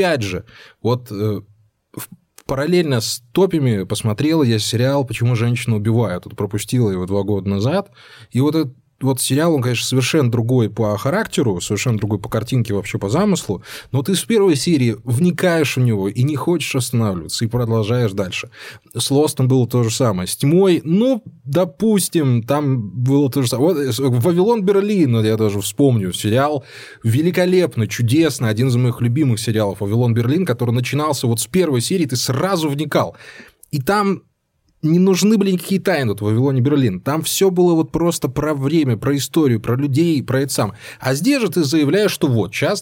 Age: 20-39